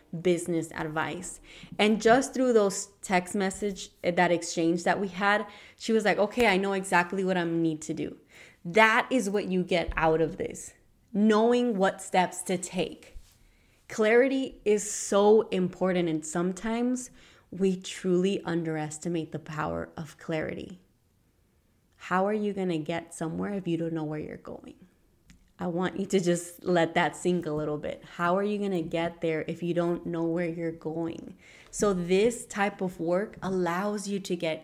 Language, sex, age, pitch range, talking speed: English, female, 20-39, 170-205 Hz, 170 wpm